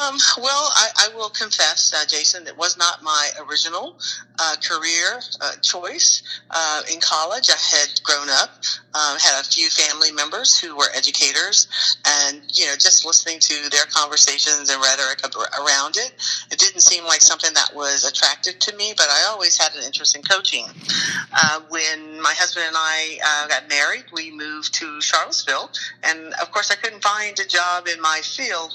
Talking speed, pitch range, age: 180 wpm, 150-180 Hz, 40-59